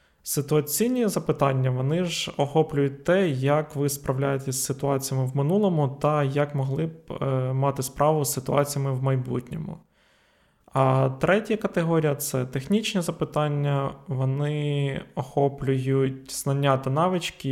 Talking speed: 120 wpm